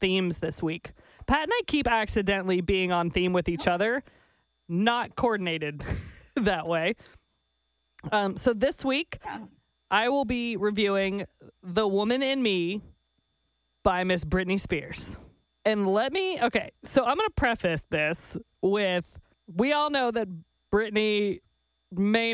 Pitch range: 185-250 Hz